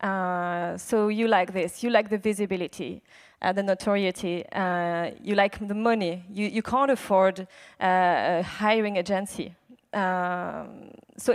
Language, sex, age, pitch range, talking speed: English, female, 20-39, 195-250 Hz, 145 wpm